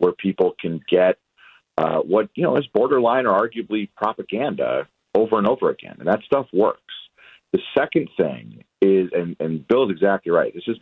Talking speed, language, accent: 185 wpm, English, American